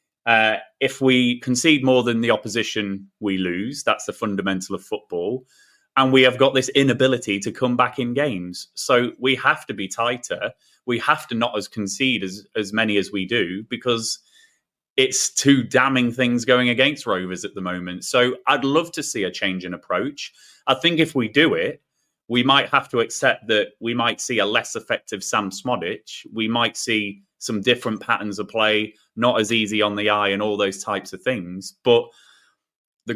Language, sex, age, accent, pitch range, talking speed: English, male, 30-49, British, 110-155 Hz, 190 wpm